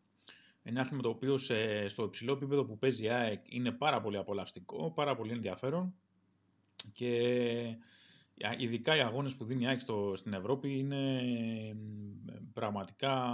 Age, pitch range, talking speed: 20-39, 105-130 Hz, 125 wpm